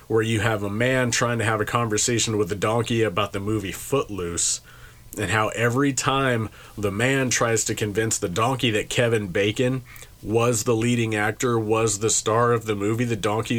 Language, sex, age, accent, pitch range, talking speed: English, male, 30-49, American, 110-130 Hz, 190 wpm